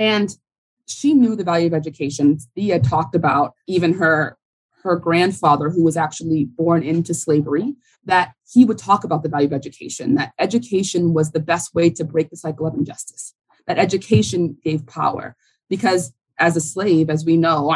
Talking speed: 175 wpm